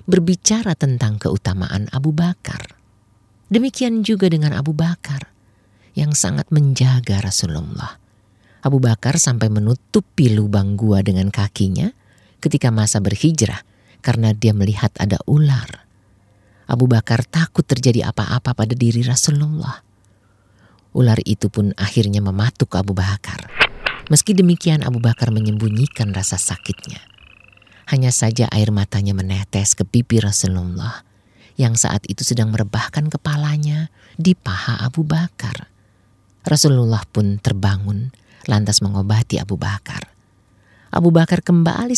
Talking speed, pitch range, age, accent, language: 115 wpm, 100-145 Hz, 50-69, native, Indonesian